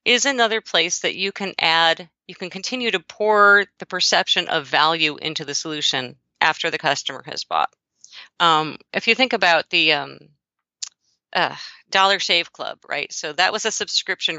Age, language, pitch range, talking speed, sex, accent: 50-69, English, 165-220 Hz, 170 wpm, female, American